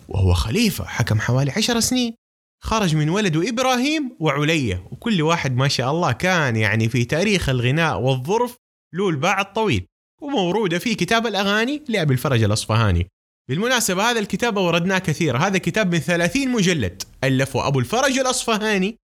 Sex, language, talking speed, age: male, Arabic, 145 wpm, 20-39